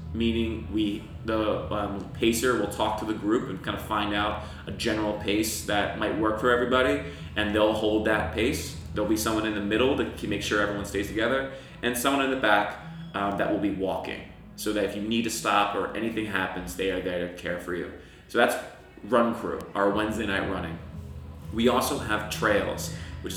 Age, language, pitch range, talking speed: 20-39, English, 95-110 Hz, 210 wpm